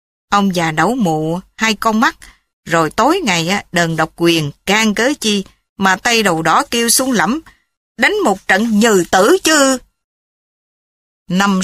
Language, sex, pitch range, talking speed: Vietnamese, female, 175-250 Hz, 155 wpm